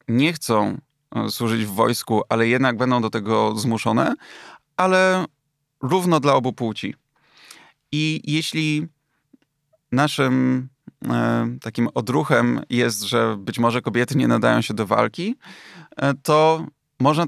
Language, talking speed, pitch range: Polish, 115 wpm, 115-150 Hz